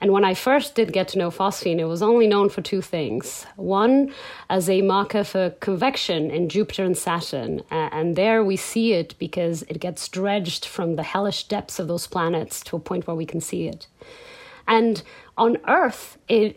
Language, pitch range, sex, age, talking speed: English, 180-225 Hz, female, 30-49, 195 wpm